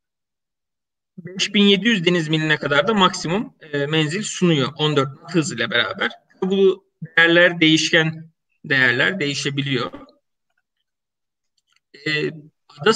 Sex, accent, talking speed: male, native, 95 wpm